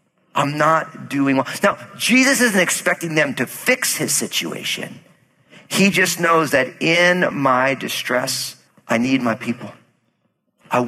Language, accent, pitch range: English, American, 125-170 Hz